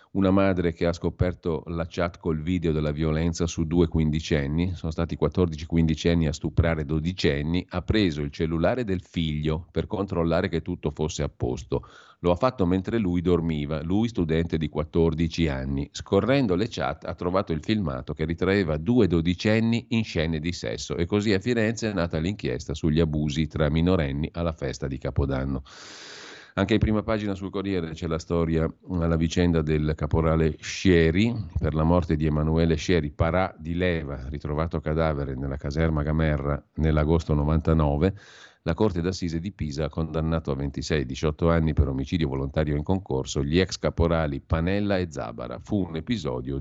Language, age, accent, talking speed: Italian, 40-59, native, 165 wpm